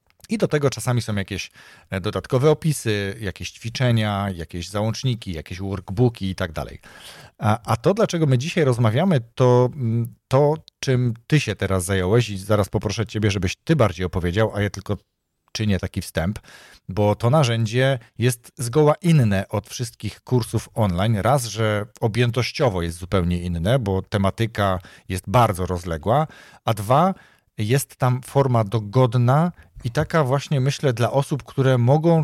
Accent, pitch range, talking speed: native, 105-130 Hz, 145 wpm